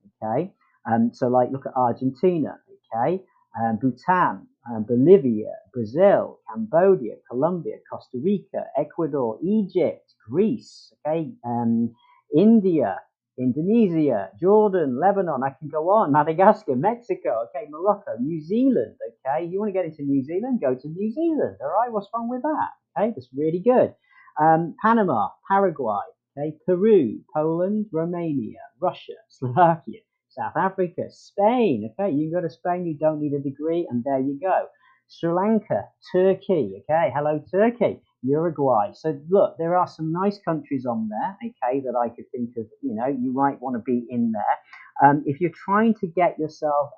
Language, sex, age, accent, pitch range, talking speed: English, male, 40-59, British, 135-205 Hz, 155 wpm